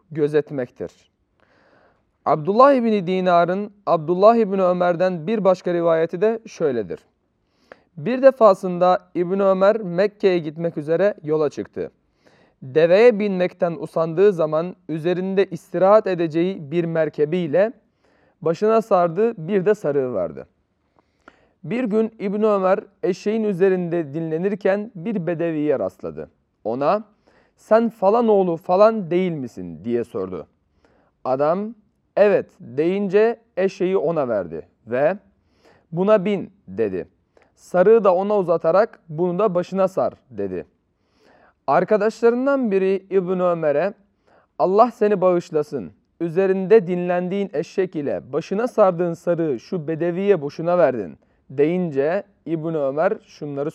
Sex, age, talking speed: male, 40-59, 105 wpm